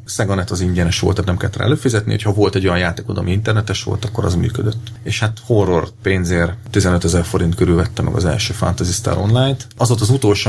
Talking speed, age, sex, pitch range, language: 225 wpm, 30-49, male, 95-115 Hz, Hungarian